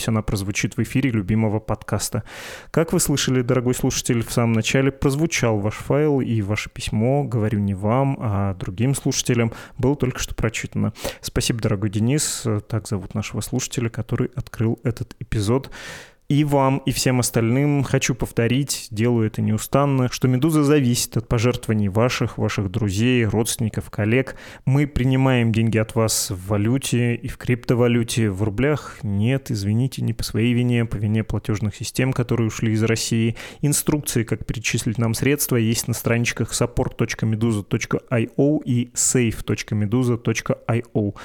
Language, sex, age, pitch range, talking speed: Russian, male, 20-39, 110-130 Hz, 145 wpm